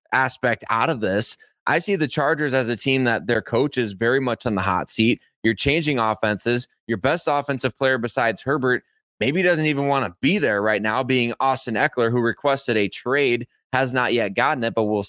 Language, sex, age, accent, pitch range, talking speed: English, male, 20-39, American, 115-140 Hz, 210 wpm